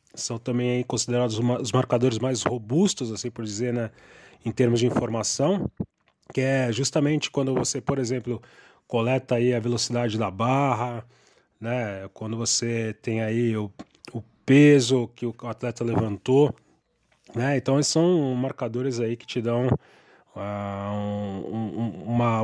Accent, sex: Brazilian, male